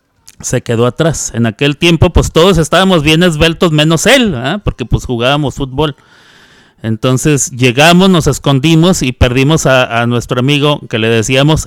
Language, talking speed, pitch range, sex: Spanish, 160 wpm, 120-175 Hz, male